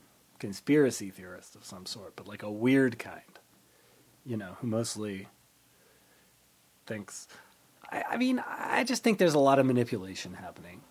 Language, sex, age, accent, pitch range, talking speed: English, male, 30-49, American, 110-135 Hz, 150 wpm